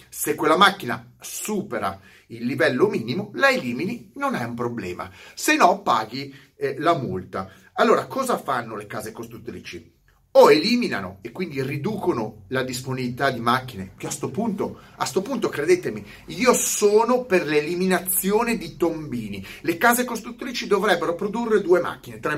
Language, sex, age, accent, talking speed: Italian, male, 30-49, native, 150 wpm